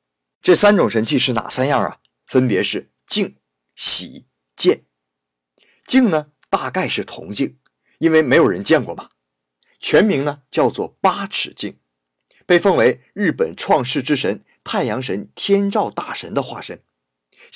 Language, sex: Chinese, male